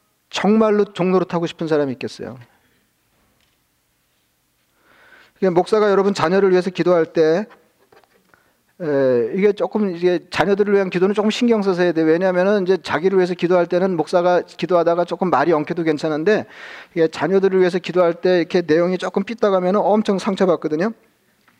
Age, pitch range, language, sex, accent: 40-59, 165-200 Hz, Korean, male, native